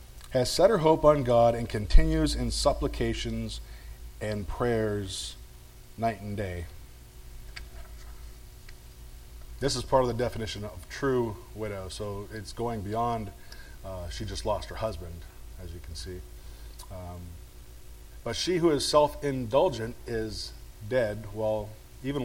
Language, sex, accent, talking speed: English, male, American, 125 wpm